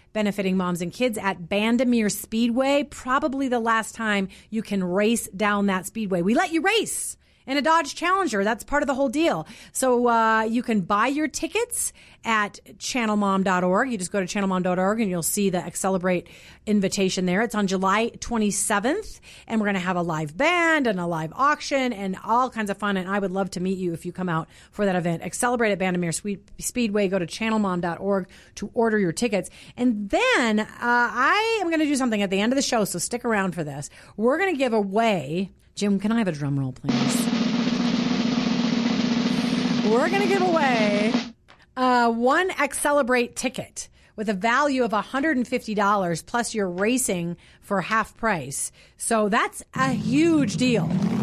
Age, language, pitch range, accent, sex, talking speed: 30-49, English, 195-255 Hz, American, female, 185 wpm